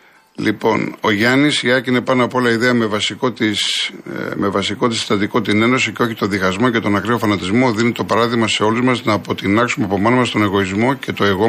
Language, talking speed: Greek, 205 wpm